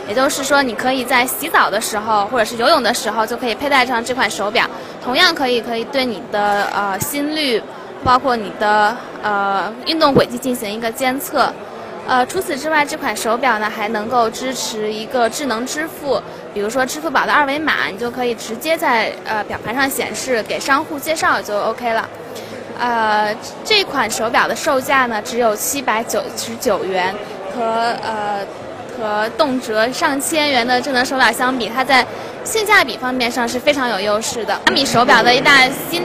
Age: 20-39